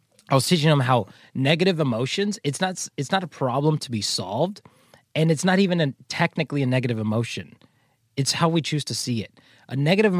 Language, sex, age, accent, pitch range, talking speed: English, male, 30-49, American, 115-155 Hz, 200 wpm